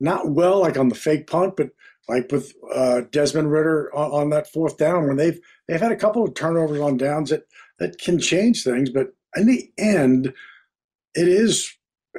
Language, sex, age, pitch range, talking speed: English, male, 50-69, 140-185 Hz, 195 wpm